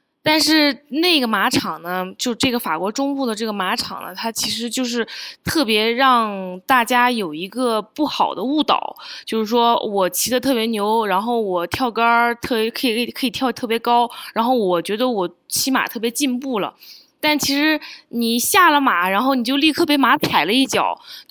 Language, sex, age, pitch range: Chinese, female, 20-39, 215-285 Hz